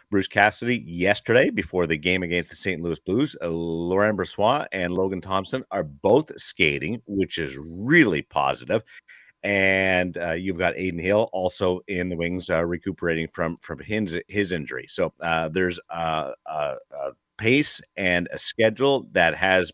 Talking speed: 160 wpm